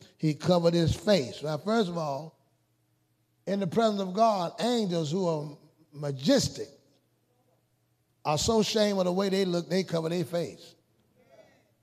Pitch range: 145-200 Hz